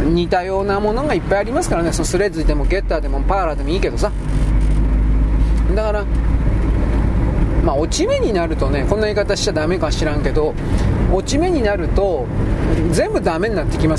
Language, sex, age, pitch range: Japanese, male, 40-59, 160-270 Hz